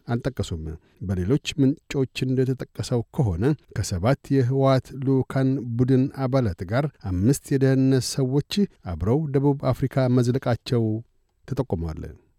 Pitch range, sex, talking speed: 120-140 Hz, male, 95 wpm